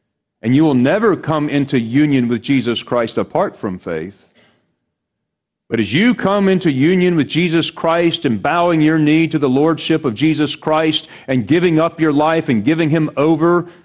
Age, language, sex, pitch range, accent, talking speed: 40-59, English, male, 115-170 Hz, American, 180 wpm